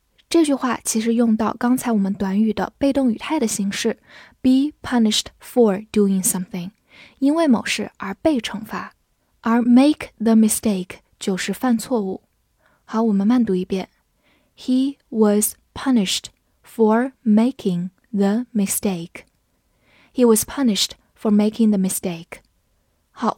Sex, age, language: female, 10-29, Chinese